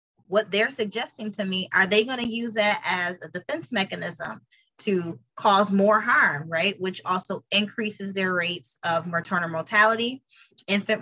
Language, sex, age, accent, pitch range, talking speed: English, female, 20-39, American, 185-225 Hz, 150 wpm